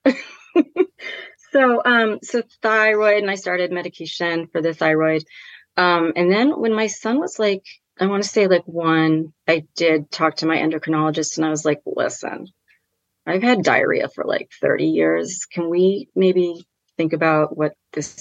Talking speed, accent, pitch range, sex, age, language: 165 wpm, American, 155-195 Hz, female, 30-49, English